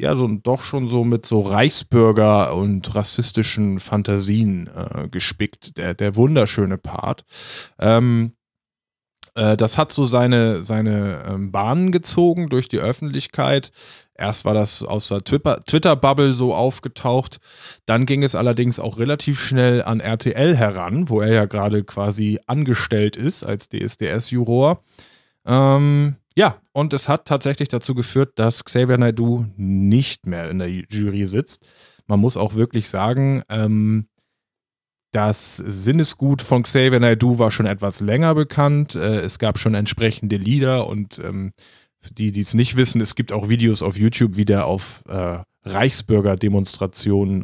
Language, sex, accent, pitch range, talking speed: German, male, German, 100-130 Hz, 145 wpm